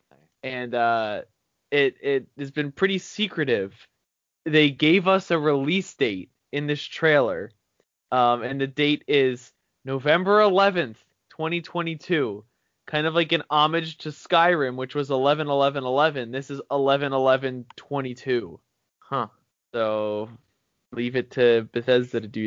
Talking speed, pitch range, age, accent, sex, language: 125 wpm, 125-165 Hz, 20-39, American, male, English